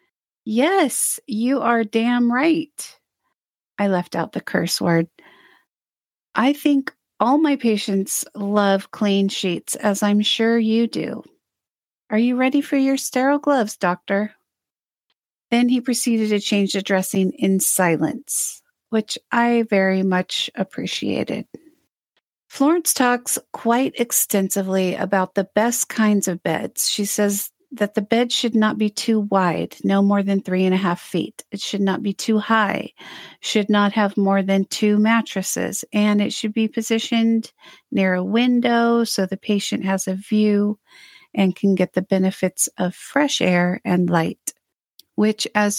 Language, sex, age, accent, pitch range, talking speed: English, female, 40-59, American, 190-235 Hz, 150 wpm